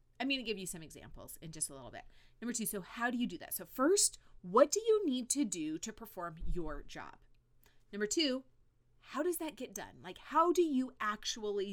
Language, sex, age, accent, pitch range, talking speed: English, female, 30-49, American, 170-285 Hz, 225 wpm